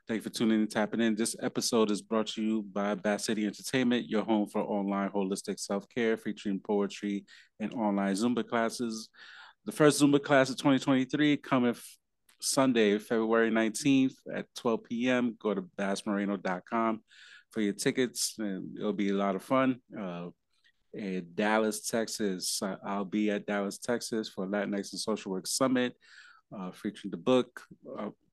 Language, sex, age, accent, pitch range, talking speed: English, male, 30-49, American, 100-115 Hz, 160 wpm